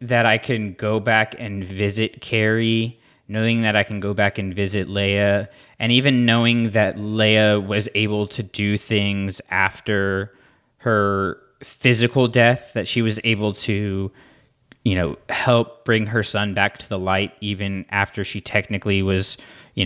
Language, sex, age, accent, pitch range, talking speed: English, male, 20-39, American, 100-120 Hz, 155 wpm